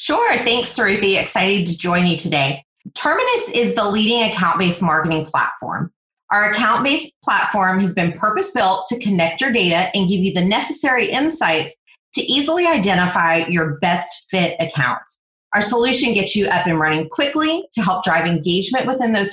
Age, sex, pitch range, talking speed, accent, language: 30-49, female, 175-245 Hz, 160 wpm, American, English